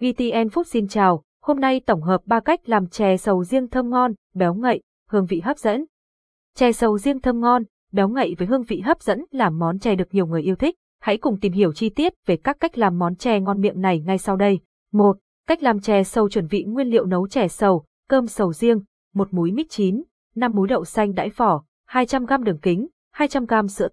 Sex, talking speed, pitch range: female, 225 wpm, 190-250 Hz